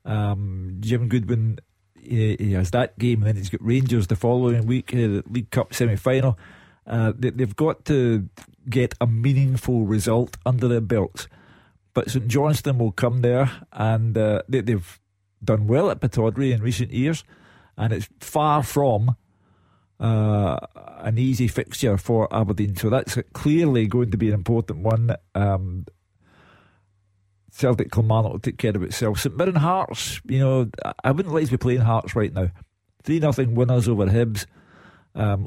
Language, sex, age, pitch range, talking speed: English, male, 40-59, 105-130 Hz, 165 wpm